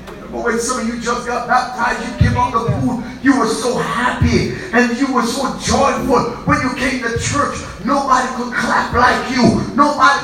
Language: English